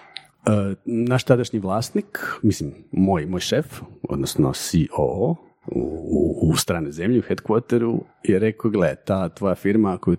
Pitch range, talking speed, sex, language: 90-115 Hz, 140 wpm, male, Croatian